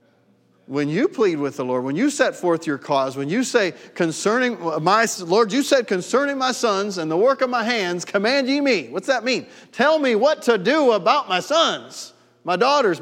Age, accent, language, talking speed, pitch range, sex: 40-59, American, English, 205 wpm, 120-165 Hz, male